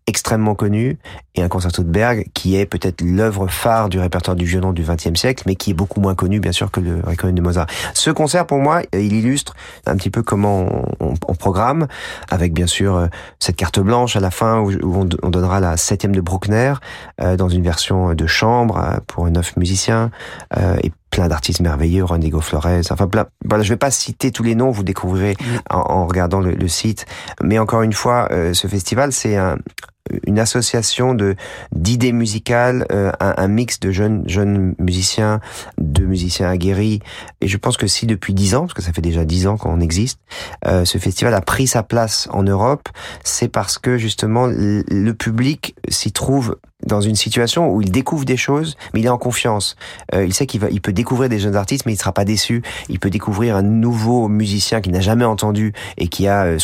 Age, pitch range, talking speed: 40-59, 90-115 Hz, 205 wpm